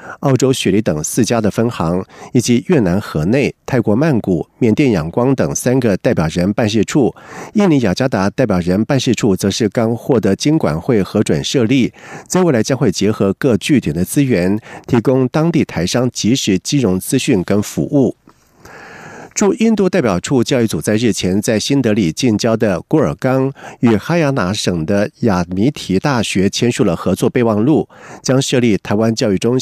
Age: 50-69